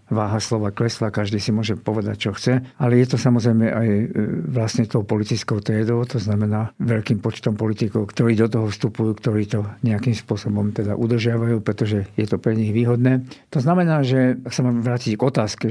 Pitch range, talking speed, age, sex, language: 110-130 Hz, 185 wpm, 50-69, male, Slovak